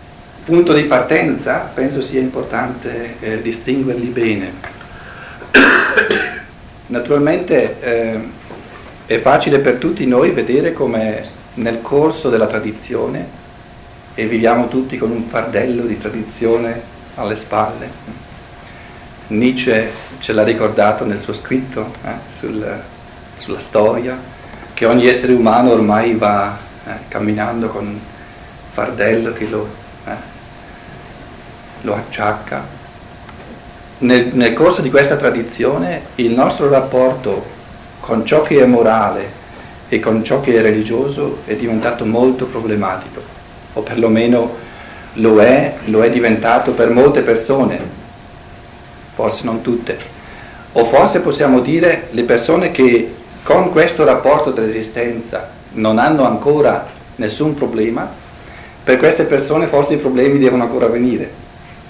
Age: 50-69